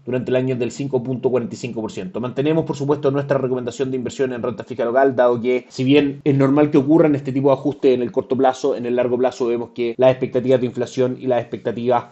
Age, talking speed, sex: 30-49, 225 wpm, male